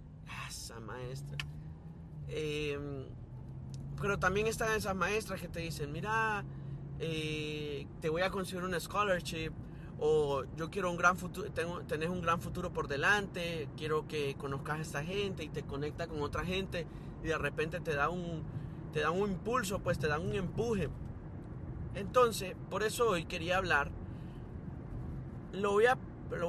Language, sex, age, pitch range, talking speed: Spanish, male, 30-49, 140-185 Hz, 155 wpm